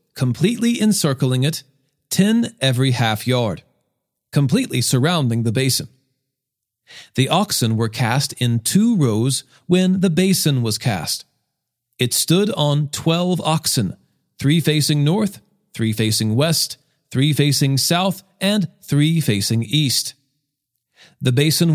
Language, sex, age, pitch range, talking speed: English, male, 40-59, 120-175 Hz, 120 wpm